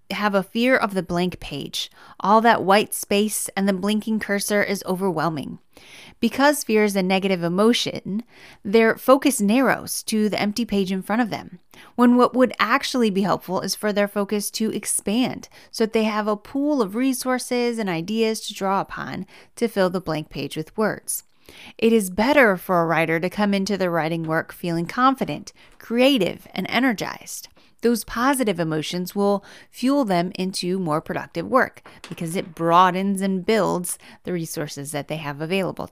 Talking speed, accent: 175 wpm, American